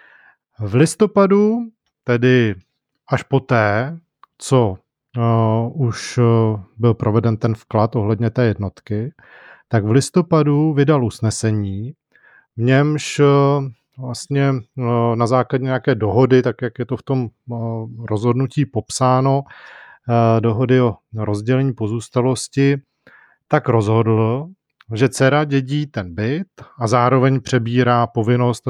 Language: Czech